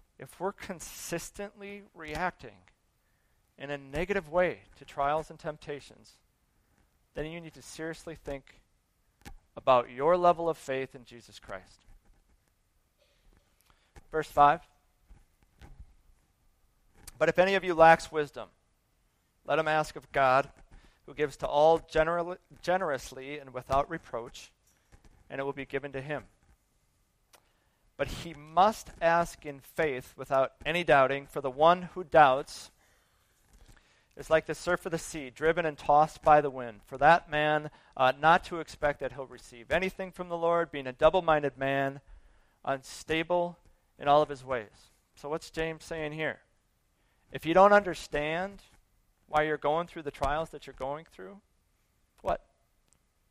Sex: male